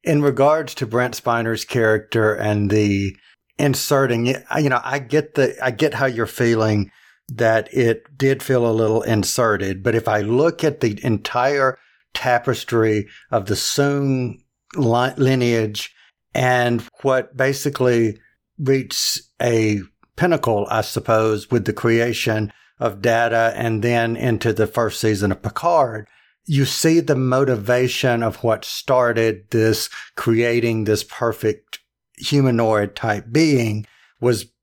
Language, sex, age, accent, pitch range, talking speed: English, male, 50-69, American, 110-130 Hz, 130 wpm